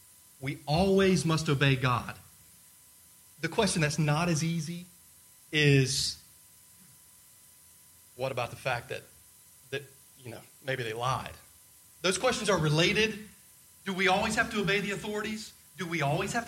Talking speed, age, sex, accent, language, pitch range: 140 wpm, 30-49, male, American, English, 120-195 Hz